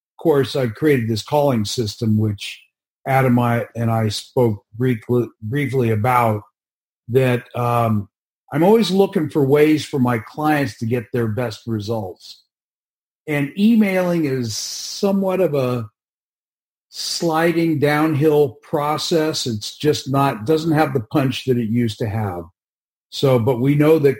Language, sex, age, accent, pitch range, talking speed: English, male, 50-69, American, 115-145 Hz, 135 wpm